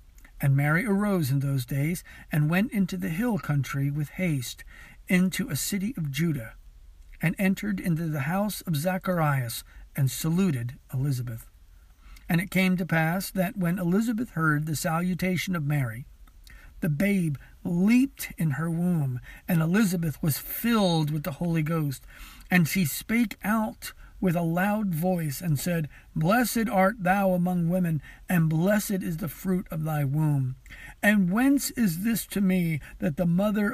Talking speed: 155 wpm